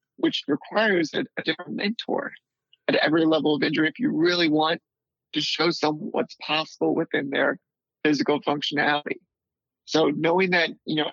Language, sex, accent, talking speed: English, male, American, 155 wpm